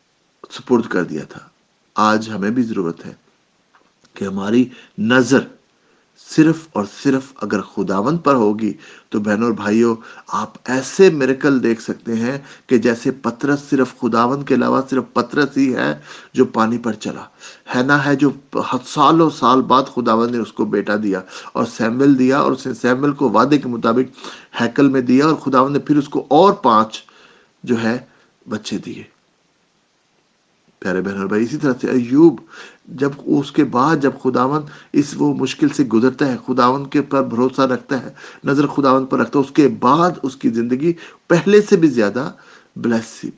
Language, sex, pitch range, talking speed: English, male, 115-145 Hz, 155 wpm